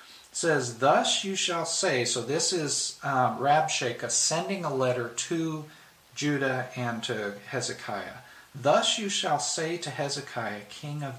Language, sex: English, male